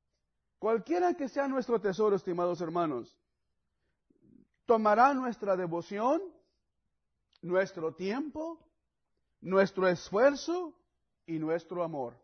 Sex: male